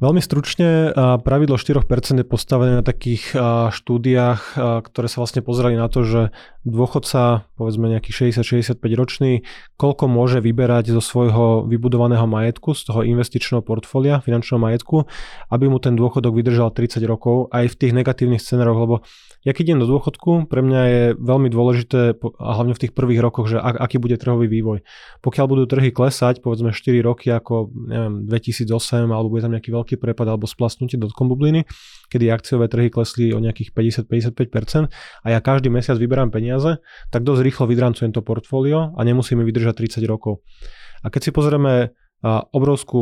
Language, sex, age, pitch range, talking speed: Slovak, male, 20-39, 115-130 Hz, 160 wpm